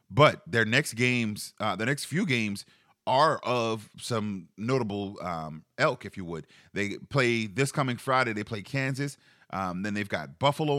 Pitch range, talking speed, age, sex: 100-130 Hz, 170 wpm, 30-49, male